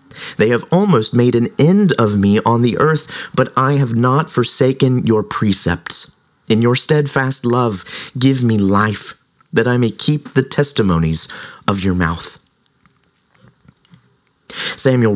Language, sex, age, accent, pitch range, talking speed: English, male, 30-49, American, 105-130 Hz, 140 wpm